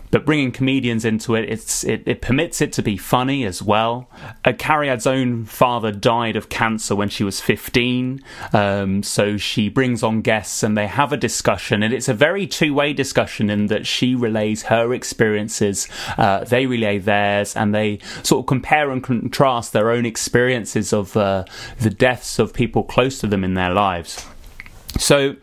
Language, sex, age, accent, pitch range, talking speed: English, male, 20-39, British, 110-135 Hz, 175 wpm